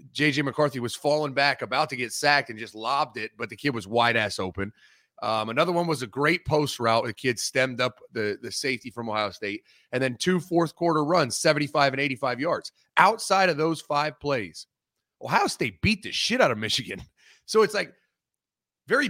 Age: 30-49